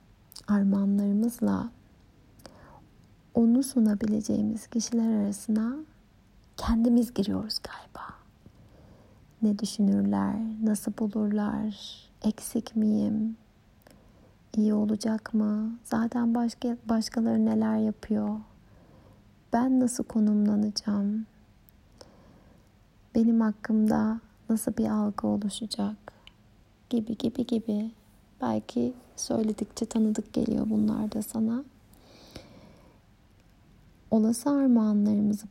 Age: 30-49